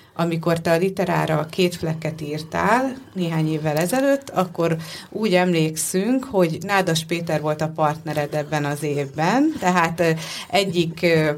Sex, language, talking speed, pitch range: female, Hungarian, 125 wpm, 150-180 Hz